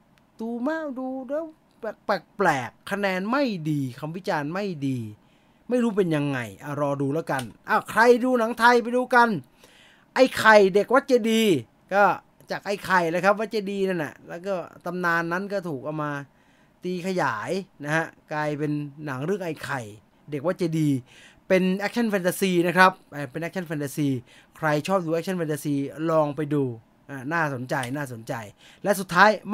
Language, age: English, 20-39